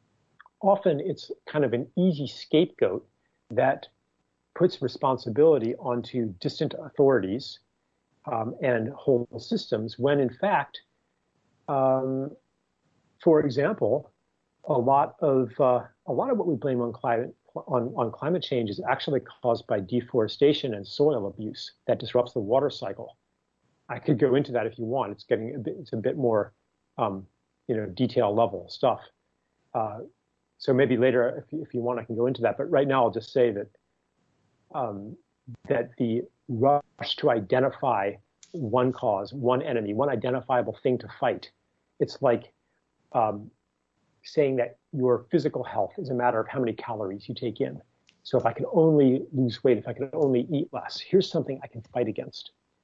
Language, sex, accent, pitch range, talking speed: English, male, American, 115-140 Hz, 165 wpm